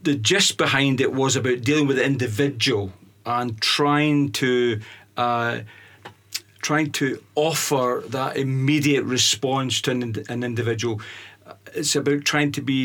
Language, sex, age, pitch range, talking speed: English, male, 40-59, 110-135 Hz, 135 wpm